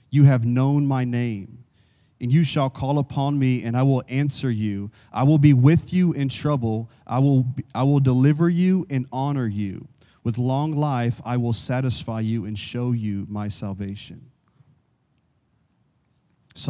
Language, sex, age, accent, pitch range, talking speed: English, male, 30-49, American, 115-135 Hz, 160 wpm